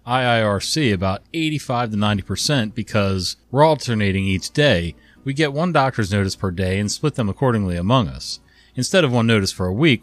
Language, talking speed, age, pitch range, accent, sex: English, 180 wpm, 30-49, 95-130 Hz, American, male